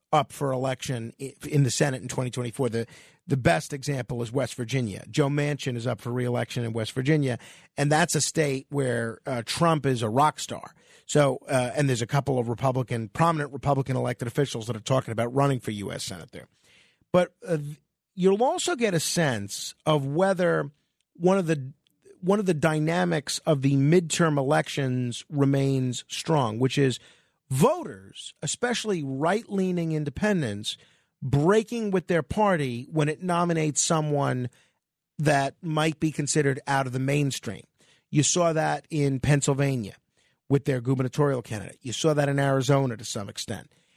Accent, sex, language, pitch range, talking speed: American, male, English, 130-165 Hz, 160 wpm